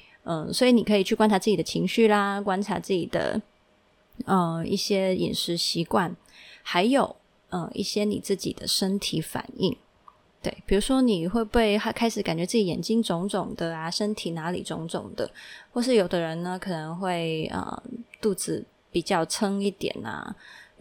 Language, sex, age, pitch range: Chinese, female, 20-39, 180-225 Hz